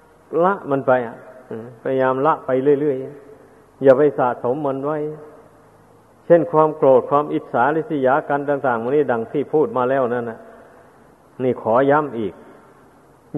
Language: Thai